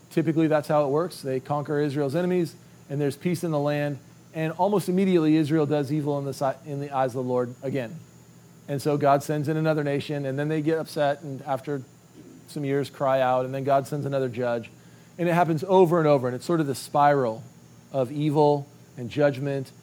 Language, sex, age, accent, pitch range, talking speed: English, male, 40-59, American, 135-160 Hz, 210 wpm